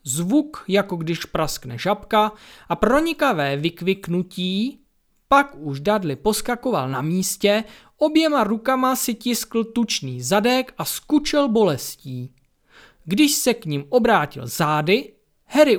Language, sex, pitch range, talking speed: Czech, male, 150-230 Hz, 115 wpm